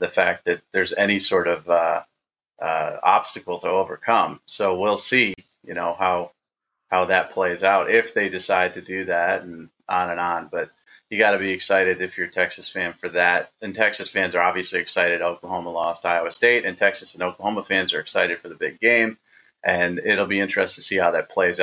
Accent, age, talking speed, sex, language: American, 30-49, 210 wpm, male, English